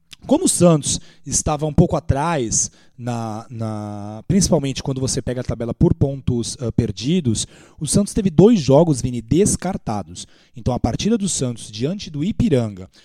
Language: Portuguese